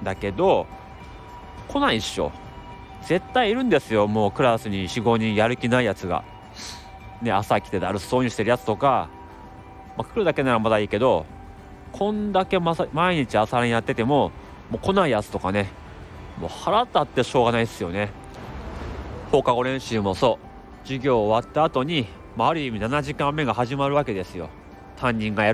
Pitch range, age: 100-130 Hz, 30-49